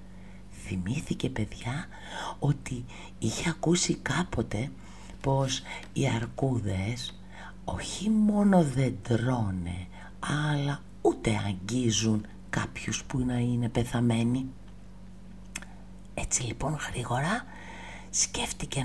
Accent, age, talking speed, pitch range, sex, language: native, 50-69, 80 wpm, 95-145 Hz, female, Greek